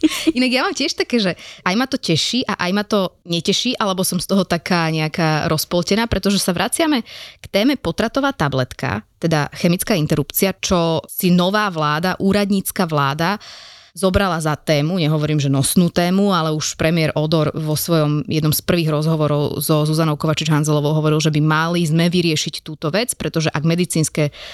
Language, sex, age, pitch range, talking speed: Slovak, female, 20-39, 150-185 Hz, 170 wpm